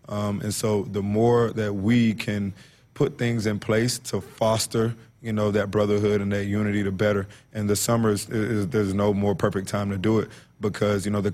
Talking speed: 215 wpm